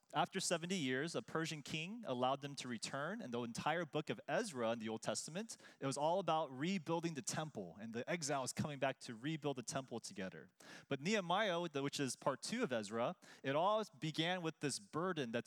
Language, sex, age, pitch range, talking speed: English, male, 30-49, 135-180 Hz, 200 wpm